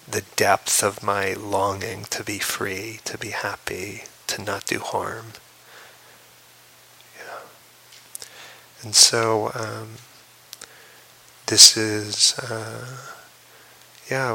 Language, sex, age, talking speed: English, male, 30-49, 95 wpm